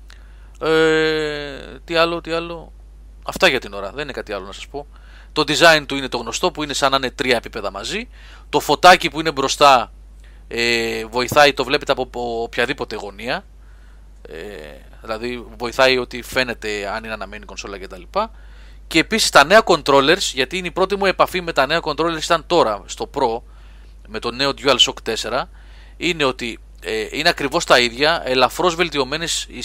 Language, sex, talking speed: Greek, male, 175 wpm